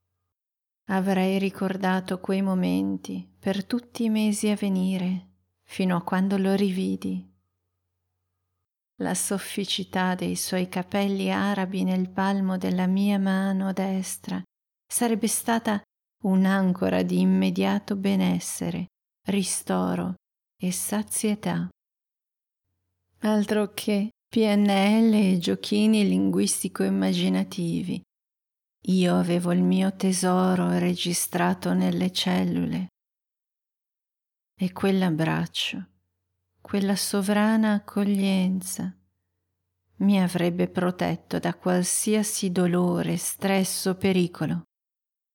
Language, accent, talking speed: Italian, native, 85 wpm